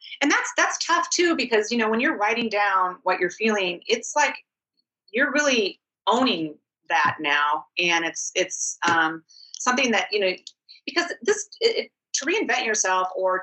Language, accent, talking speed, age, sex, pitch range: English, American, 170 wpm, 30-49, female, 180-255 Hz